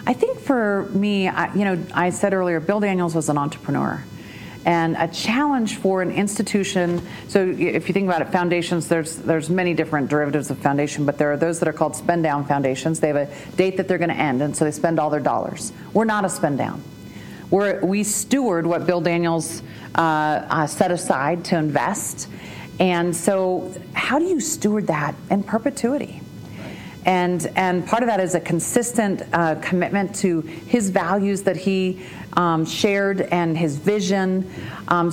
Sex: female